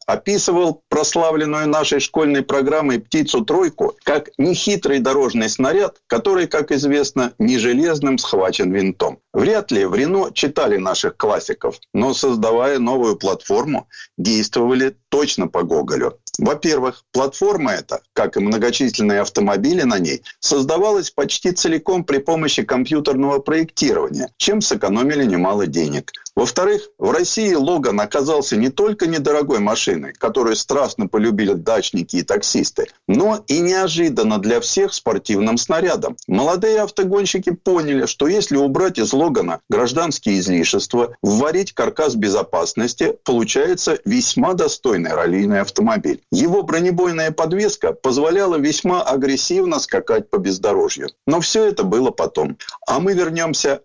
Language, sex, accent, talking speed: Russian, male, native, 125 wpm